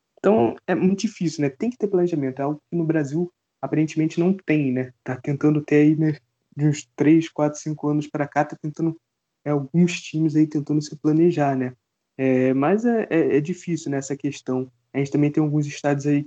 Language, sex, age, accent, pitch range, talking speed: Portuguese, male, 20-39, Brazilian, 135-155 Hz, 210 wpm